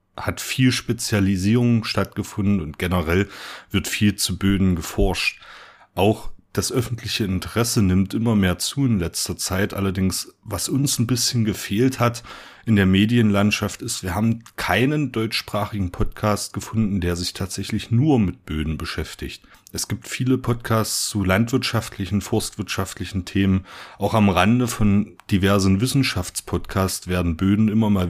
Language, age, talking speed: German, 40-59, 135 wpm